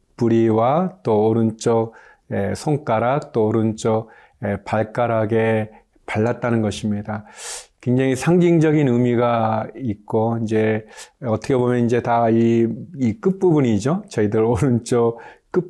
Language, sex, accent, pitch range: Korean, male, native, 110-130 Hz